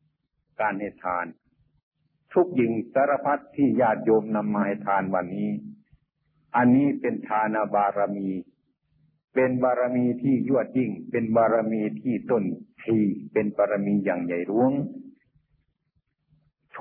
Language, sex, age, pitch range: Thai, male, 60-79, 110-150 Hz